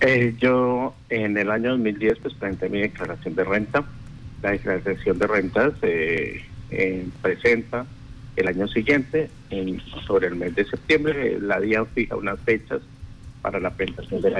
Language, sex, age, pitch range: Spanish, male, 50-69, 105-130 Hz